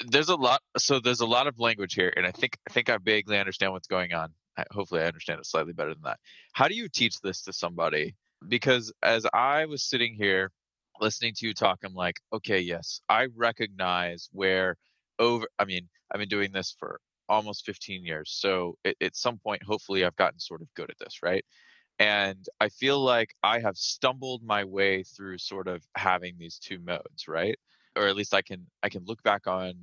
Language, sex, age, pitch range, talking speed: English, male, 20-39, 90-110 Hz, 215 wpm